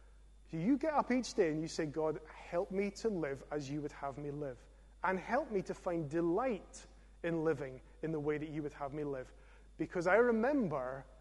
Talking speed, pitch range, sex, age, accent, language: 210 wpm, 155-195 Hz, male, 30-49, British, English